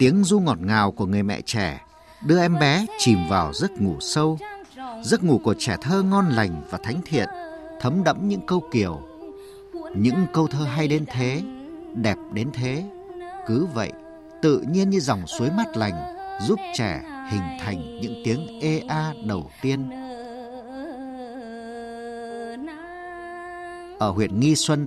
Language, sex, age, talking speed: Vietnamese, male, 50-69, 150 wpm